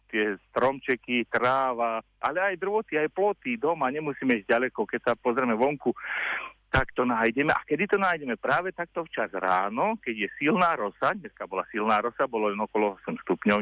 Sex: male